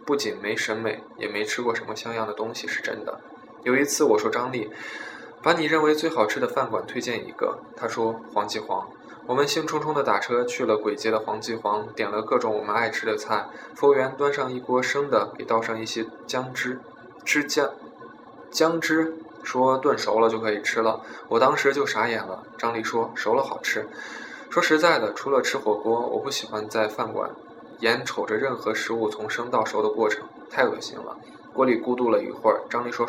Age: 20-39